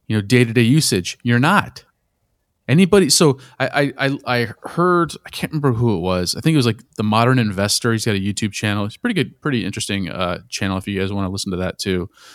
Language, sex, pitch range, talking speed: English, male, 100-140 Hz, 235 wpm